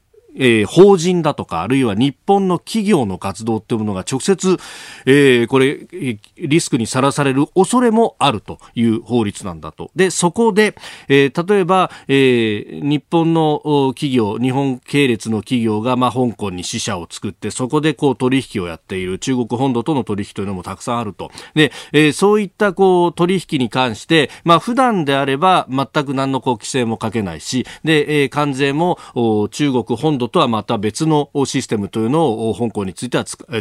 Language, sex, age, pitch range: Japanese, male, 40-59, 115-170 Hz